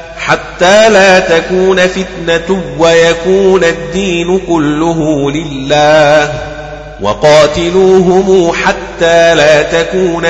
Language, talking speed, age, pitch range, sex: Arabic, 70 wpm, 30-49, 145-170 Hz, male